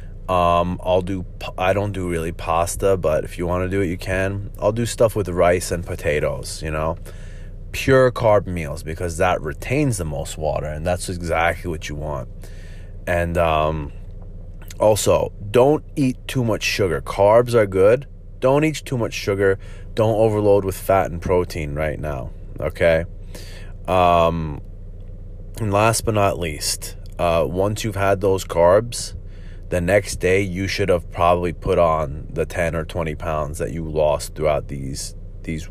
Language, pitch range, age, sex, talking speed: English, 85-100 Hz, 30-49, male, 165 wpm